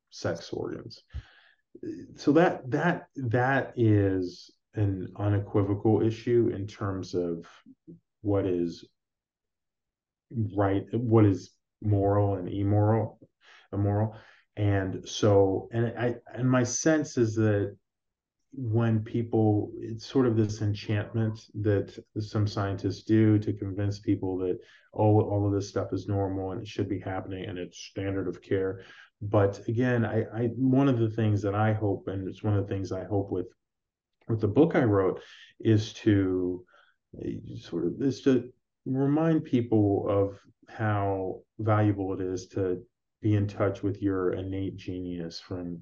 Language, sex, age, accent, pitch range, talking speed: English, male, 30-49, American, 95-115 Hz, 145 wpm